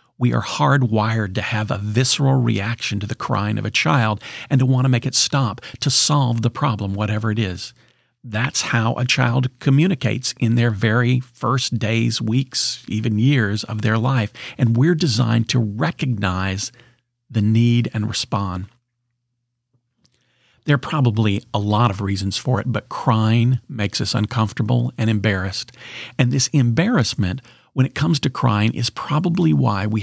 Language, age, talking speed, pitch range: English, 50-69, 160 wpm, 110-130 Hz